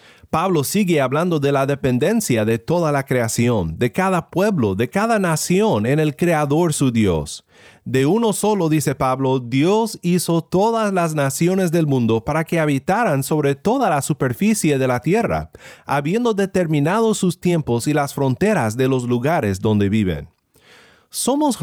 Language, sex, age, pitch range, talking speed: Spanish, male, 30-49, 130-185 Hz, 155 wpm